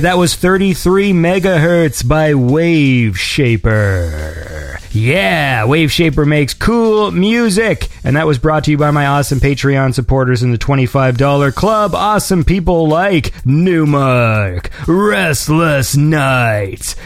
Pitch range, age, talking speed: 130-180 Hz, 30-49, 120 wpm